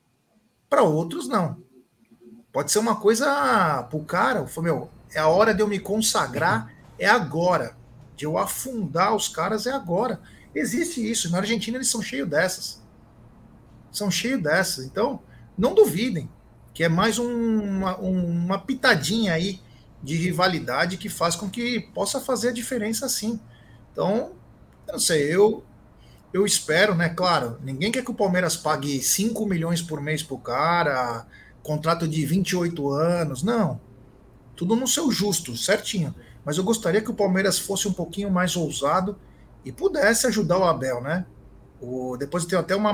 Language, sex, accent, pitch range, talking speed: Portuguese, male, Brazilian, 155-215 Hz, 160 wpm